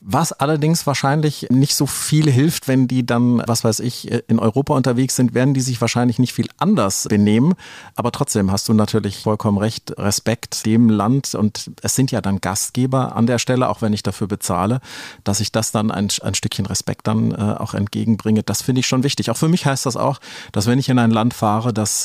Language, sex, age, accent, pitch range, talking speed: German, male, 40-59, German, 105-130 Hz, 215 wpm